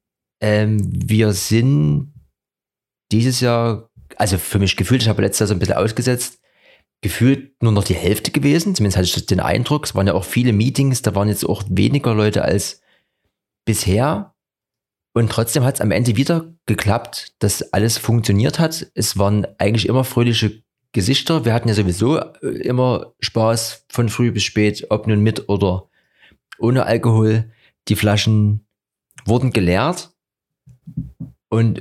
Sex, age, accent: male, 30-49, German